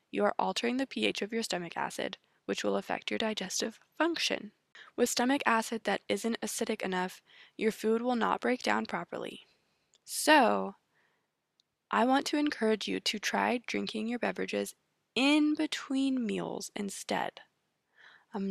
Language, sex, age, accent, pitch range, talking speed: English, female, 20-39, American, 195-235 Hz, 145 wpm